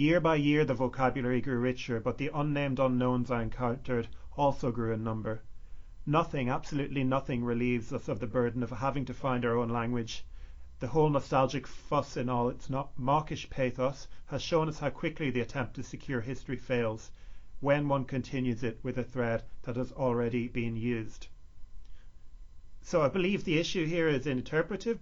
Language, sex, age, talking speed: English, male, 30-49, 175 wpm